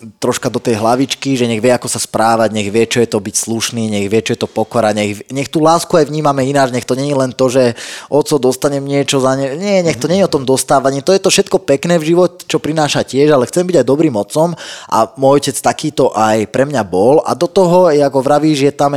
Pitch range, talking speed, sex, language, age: 115-150 Hz, 255 wpm, male, Slovak, 20-39